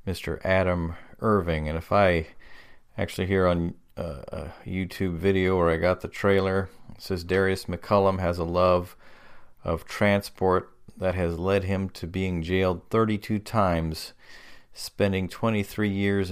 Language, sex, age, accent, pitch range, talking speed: English, male, 40-59, American, 90-105 Hz, 140 wpm